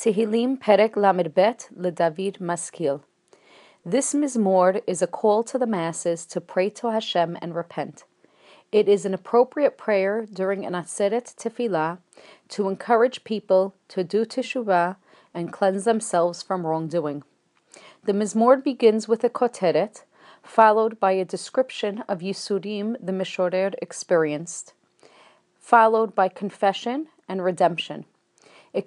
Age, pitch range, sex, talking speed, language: 40-59, 180-225 Hz, female, 125 wpm, English